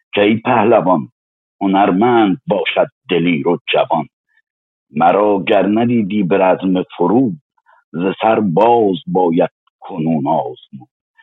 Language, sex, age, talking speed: Persian, male, 50-69, 105 wpm